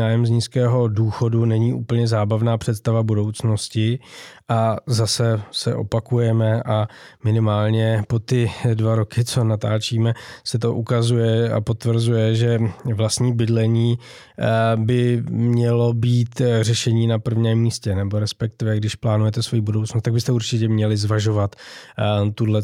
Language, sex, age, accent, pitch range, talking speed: Czech, male, 20-39, native, 110-120 Hz, 125 wpm